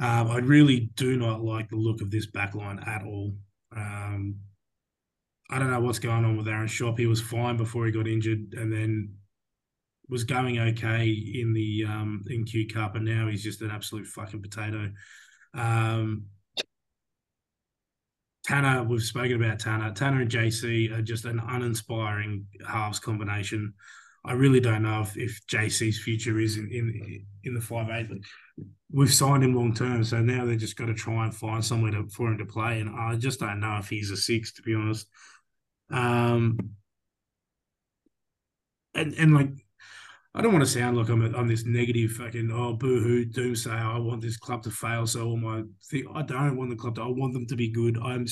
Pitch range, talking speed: 110-120 Hz, 190 wpm